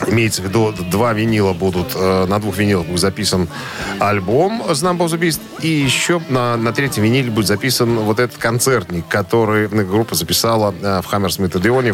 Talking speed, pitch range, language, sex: 160 wpm, 100-130 Hz, Russian, male